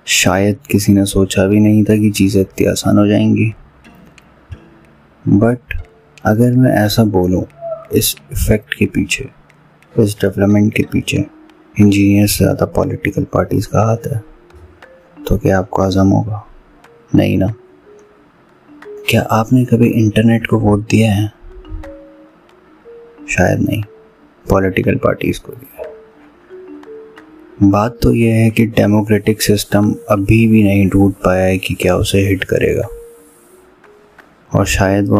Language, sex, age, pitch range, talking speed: Hindi, male, 30-49, 95-115 Hz, 125 wpm